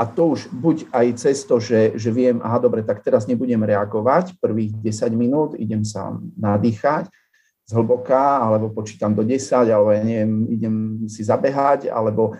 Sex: male